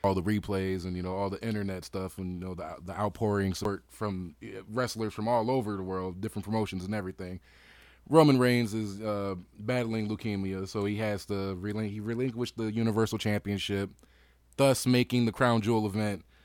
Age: 20-39